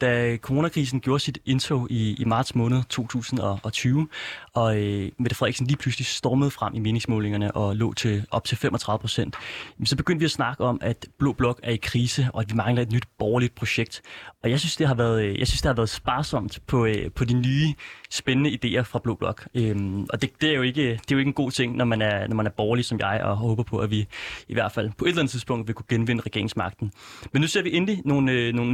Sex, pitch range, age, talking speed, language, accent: male, 115-135 Hz, 20-39, 245 wpm, Danish, native